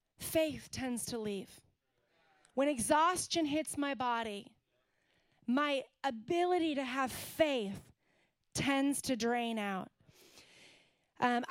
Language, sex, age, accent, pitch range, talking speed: English, female, 30-49, American, 220-265 Hz, 100 wpm